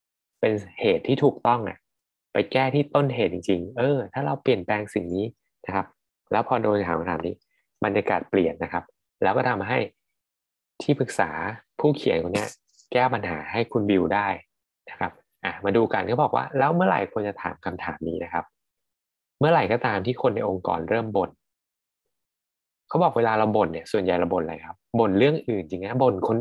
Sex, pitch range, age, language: male, 95-130 Hz, 20-39, Thai